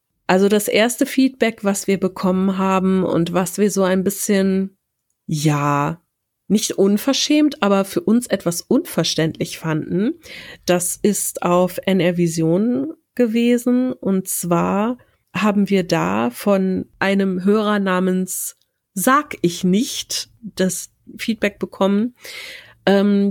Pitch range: 180-225 Hz